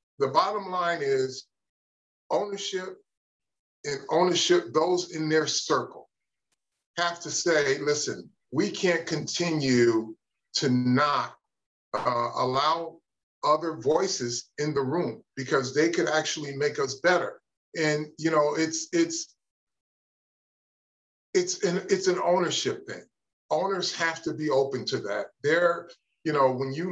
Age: 40-59